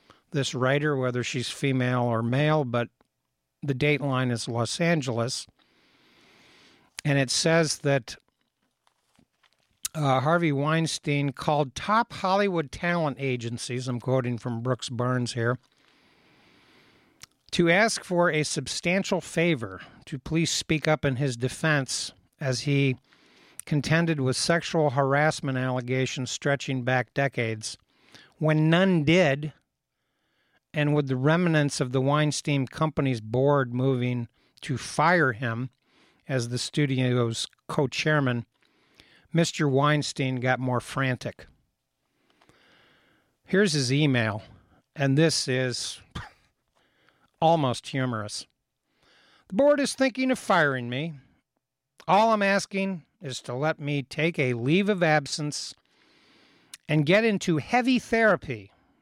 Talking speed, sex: 115 wpm, male